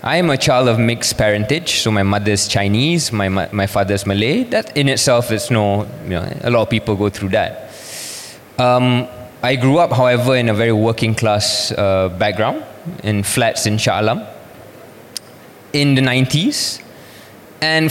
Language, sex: Malay, male